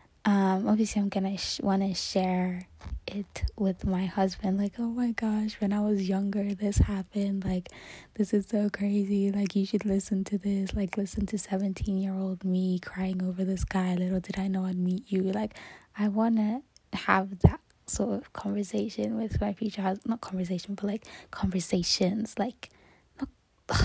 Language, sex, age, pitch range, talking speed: English, female, 10-29, 180-205 Hz, 180 wpm